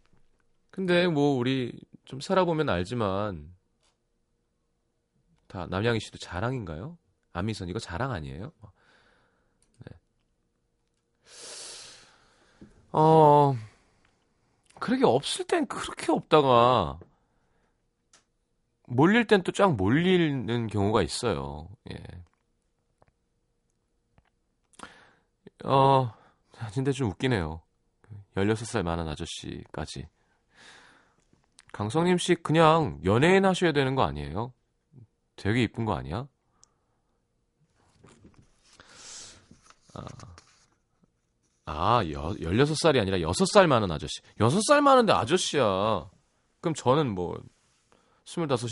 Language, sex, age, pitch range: Korean, male, 30-49, 95-155 Hz